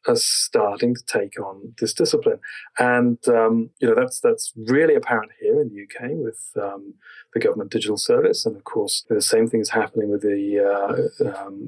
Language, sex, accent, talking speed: English, male, British, 190 wpm